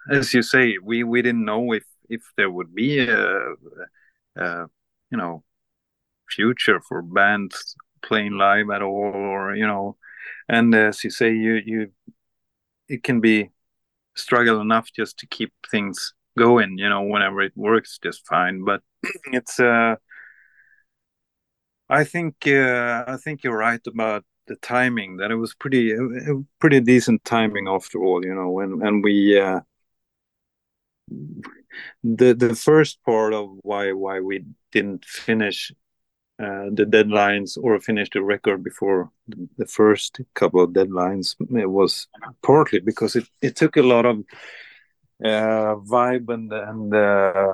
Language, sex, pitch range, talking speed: English, male, 100-120 Hz, 145 wpm